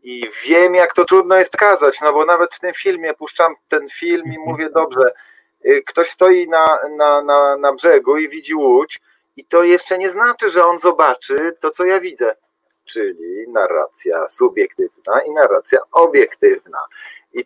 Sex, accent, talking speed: male, native, 165 wpm